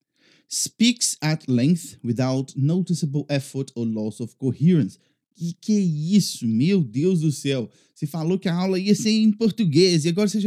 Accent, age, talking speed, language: Brazilian, 20-39, 180 wpm, English